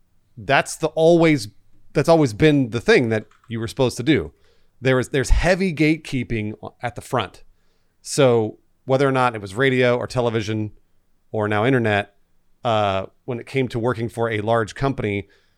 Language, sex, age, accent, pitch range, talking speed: English, male, 30-49, American, 100-130 Hz, 170 wpm